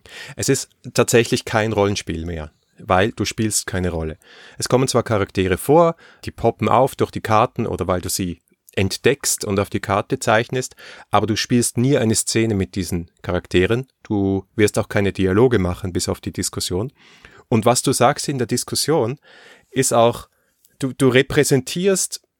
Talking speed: 170 wpm